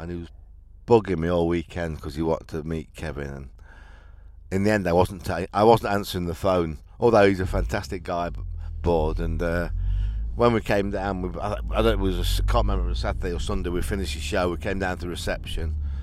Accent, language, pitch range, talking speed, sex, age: British, English, 80-105 Hz, 230 wpm, male, 50-69